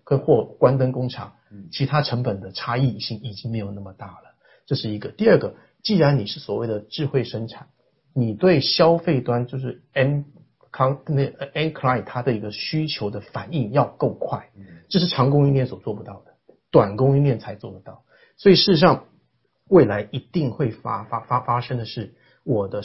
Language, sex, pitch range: Chinese, male, 110-140 Hz